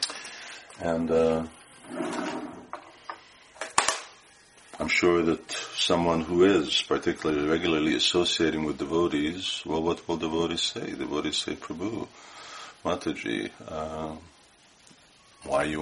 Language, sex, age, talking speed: English, male, 50-69, 100 wpm